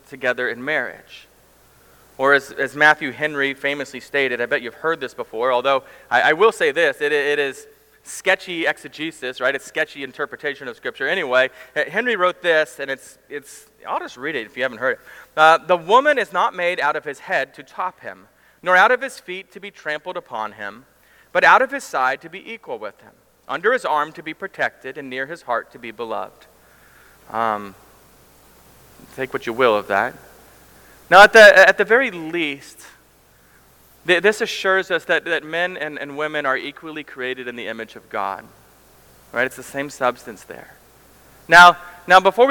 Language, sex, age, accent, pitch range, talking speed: English, male, 30-49, American, 130-175 Hz, 190 wpm